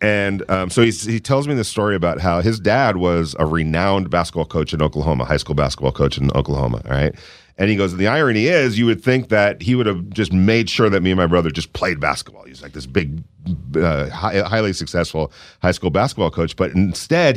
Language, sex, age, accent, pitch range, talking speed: English, male, 40-59, American, 85-115 Hz, 220 wpm